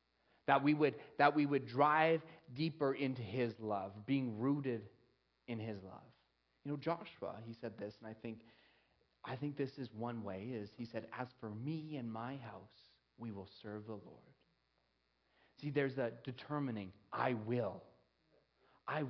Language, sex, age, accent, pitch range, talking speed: English, male, 30-49, American, 115-160 Hz, 165 wpm